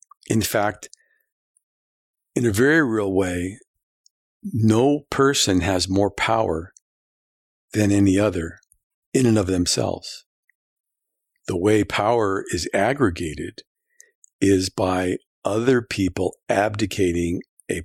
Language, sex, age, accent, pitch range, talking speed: English, male, 50-69, American, 90-110 Hz, 100 wpm